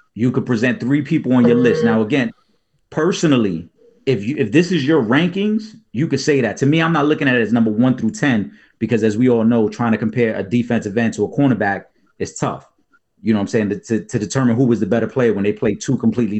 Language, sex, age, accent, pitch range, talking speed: English, male, 30-49, American, 110-135 Hz, 250 wpm